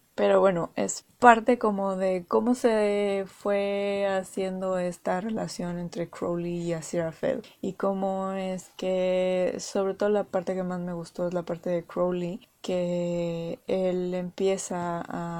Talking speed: 145 wpm